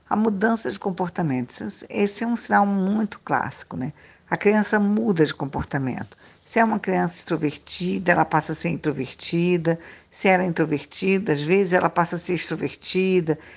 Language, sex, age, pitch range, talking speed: Portuguese, female, 50-69, 155-185 Hz, 165 wpm